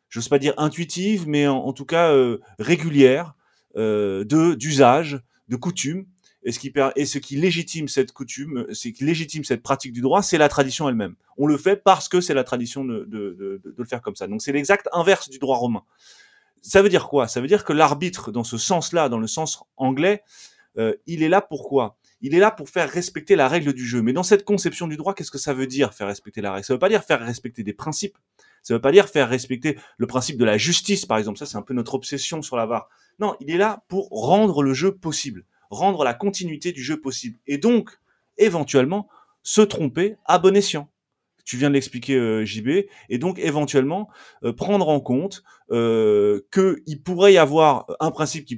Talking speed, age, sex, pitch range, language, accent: 225 wpm, 30-49, male, 130-180 Hz, French, French